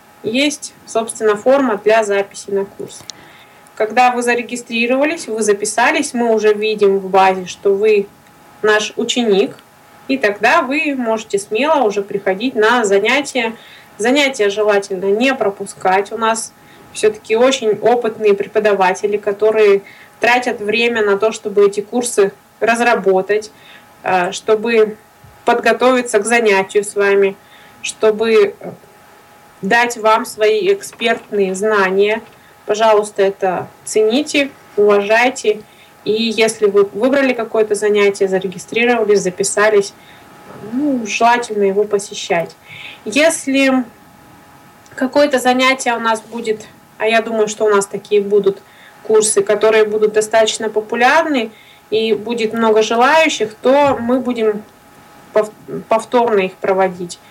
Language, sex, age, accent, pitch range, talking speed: Russian, female, 20-39, native, 205-240 Hz, 110 wpm